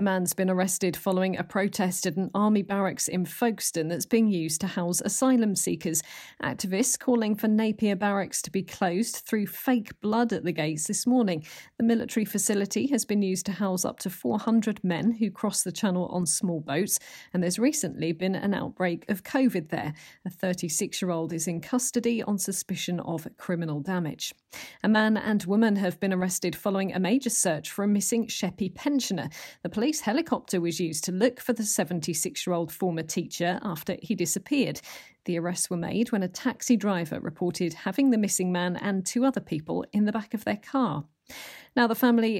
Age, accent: 40-59, British